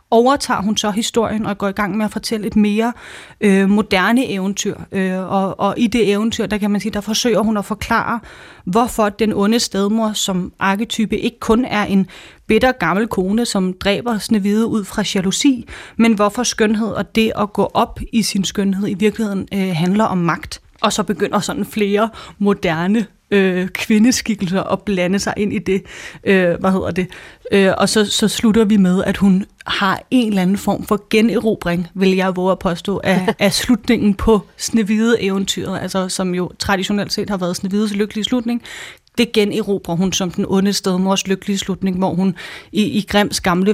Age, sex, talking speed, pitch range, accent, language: 30-49, female, 180 wpm, 190-215 Hz, native, Danish